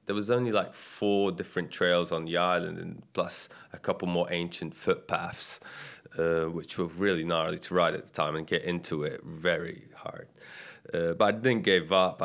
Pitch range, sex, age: 90-100 Hz, male, 20-39